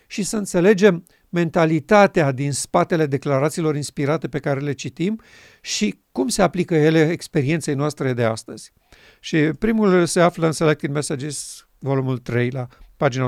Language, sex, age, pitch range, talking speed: Romanian, male, 50-69, 140-170 Hz, 145 wpm